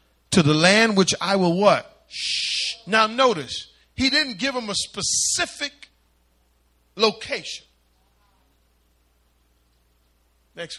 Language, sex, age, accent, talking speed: English, male, 40-59, American, 100 wpm